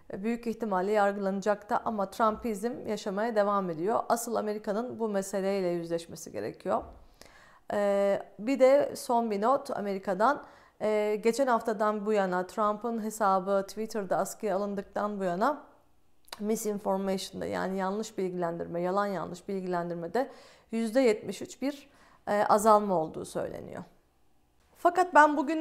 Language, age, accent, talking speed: Turkish, 40-59, native, 110 wpm